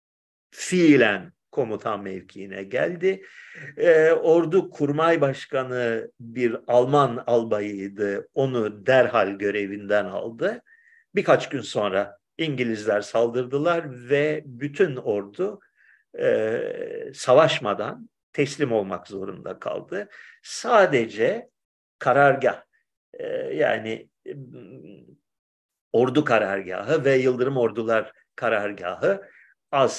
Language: Turkish